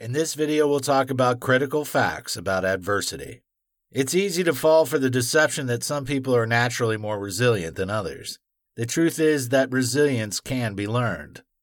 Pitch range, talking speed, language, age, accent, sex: 105-140 Hz, 175 wpm, English, 50-69, American, male